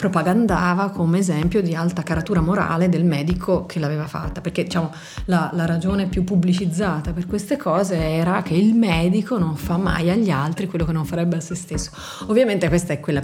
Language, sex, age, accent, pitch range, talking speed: Italian, female, 30-49, native, 155-185 Hz, 190 wpm